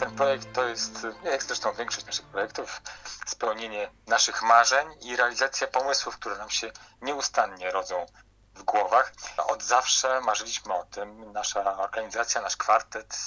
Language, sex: Polish, male